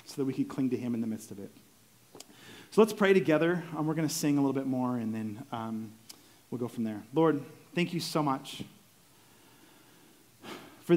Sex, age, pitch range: male, 30-49, 125-150 Hz